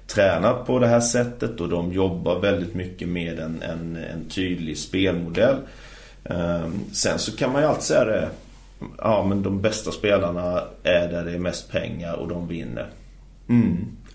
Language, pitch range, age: Swedish, 90-100 Hz, 30-49